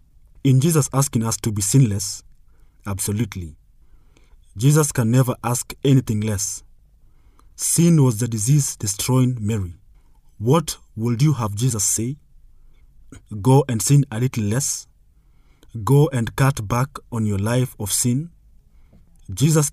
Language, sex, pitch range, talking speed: English, male, 105-130 Hz, 130 wpm